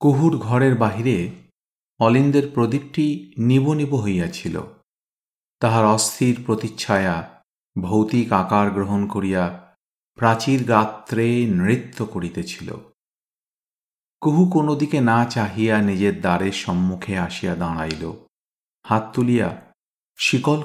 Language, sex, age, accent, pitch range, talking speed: Bengali, male, 50-69, native, 95-120 Hz, 85 wpm